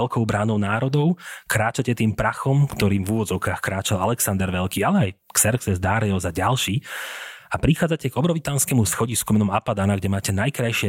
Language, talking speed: Slovak, 155 wpm